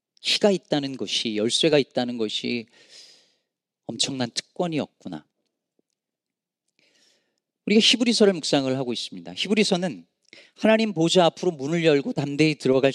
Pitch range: 135-205 Hz